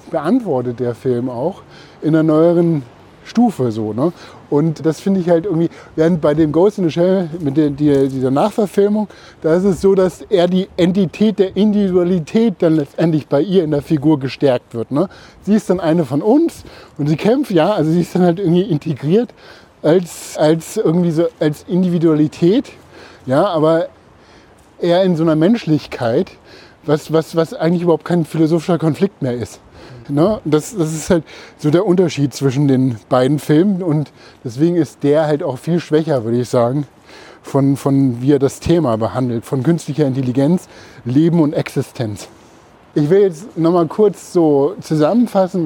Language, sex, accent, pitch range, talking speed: German, male, German, 140-180 Hz, 160 wpm